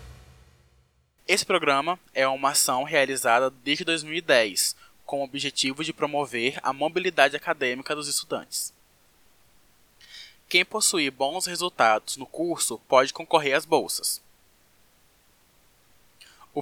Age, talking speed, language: 20-39, 105 wpm, Portuguese